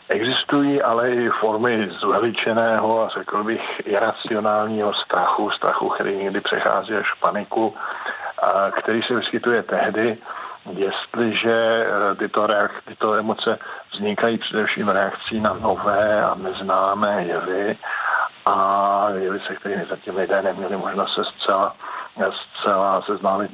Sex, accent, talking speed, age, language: male, native, 120 wpm, 50-69, Czech